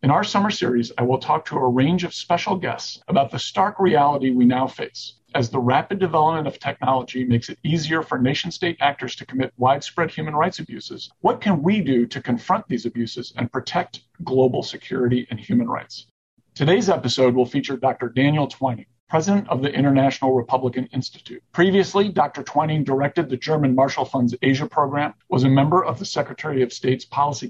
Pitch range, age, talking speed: 125-170 Hz, 50-69, 185 wpm